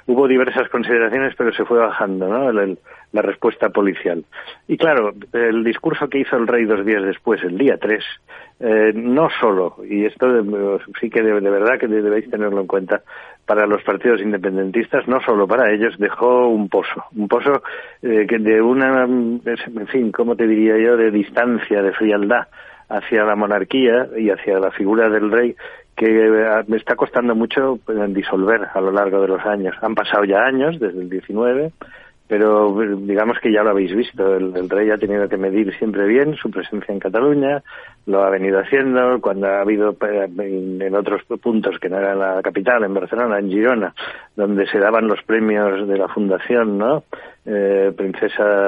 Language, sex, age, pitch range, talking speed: Spanish, male, 40-59, 100-120 Hz, 180 wpm